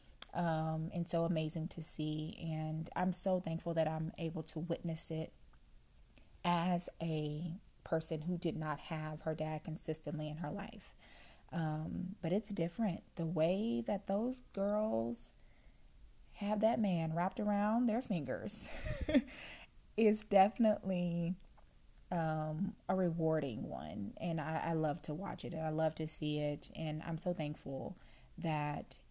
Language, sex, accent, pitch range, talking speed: English, female, American, 155-185 Hz, 140 wpm